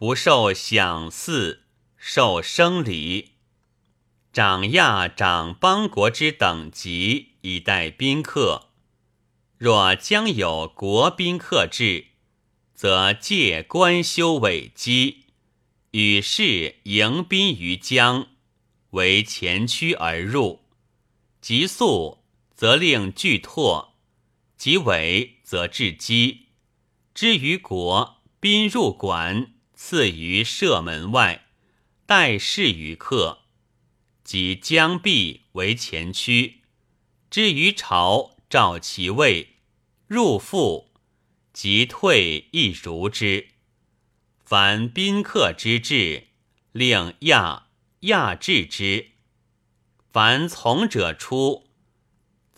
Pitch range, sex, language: 100-135 Hz, male, Chinese